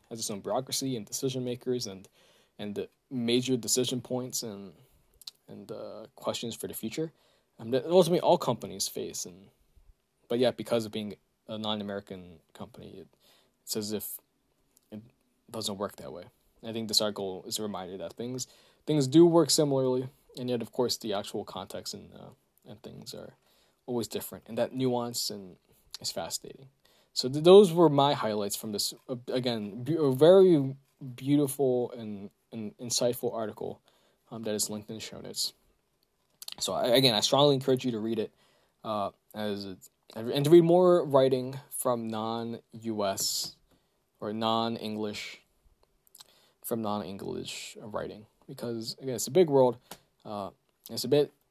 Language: English